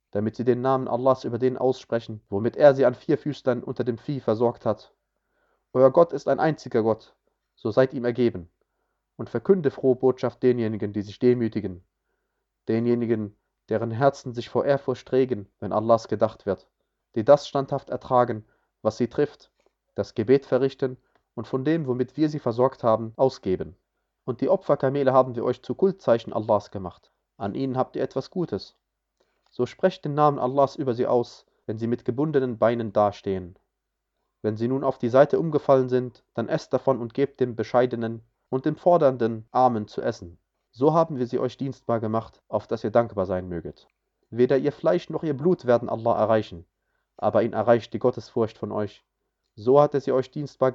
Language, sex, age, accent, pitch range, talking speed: German, male, 30-49, German, 110-135 Hz, 180 wpm